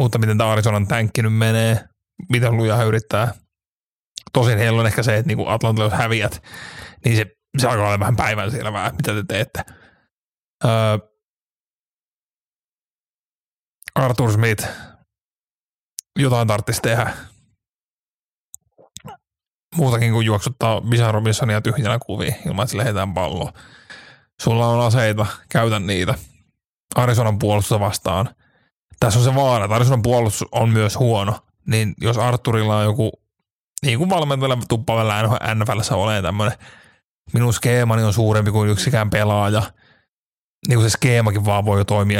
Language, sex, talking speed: Finnish, male, 130 wpm